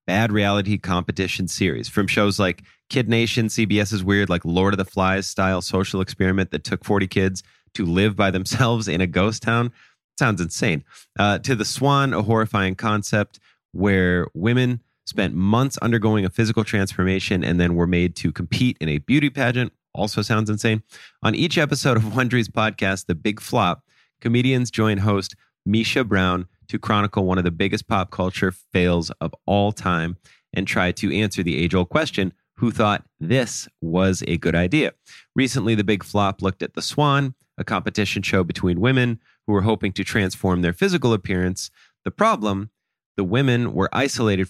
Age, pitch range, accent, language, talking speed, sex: 30-49, 90-115 Hz, American, English, 175 wpm, male